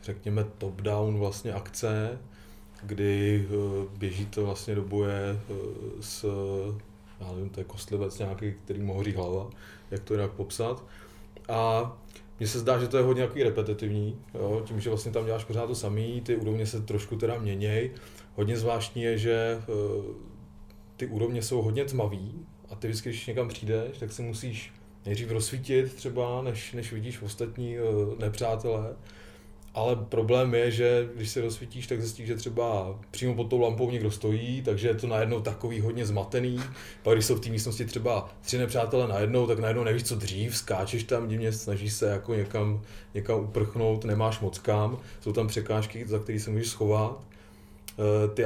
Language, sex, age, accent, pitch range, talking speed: Czech, male, 20-39, native, 100-115 Hz, 170 wpm